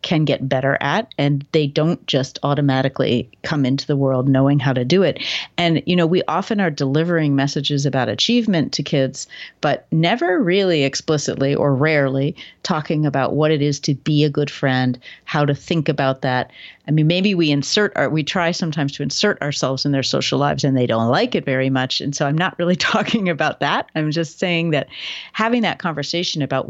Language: English